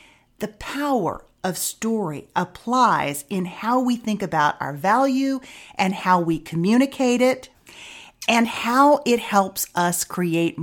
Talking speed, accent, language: 130 wpm, American, English